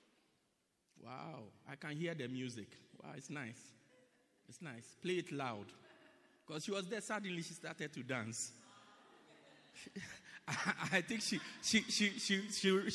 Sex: male